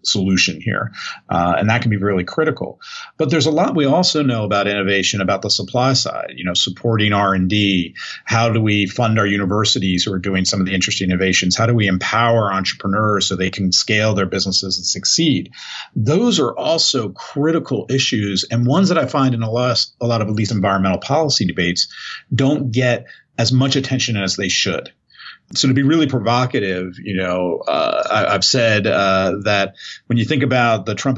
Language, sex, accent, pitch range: English, male, American, 95-120 Hz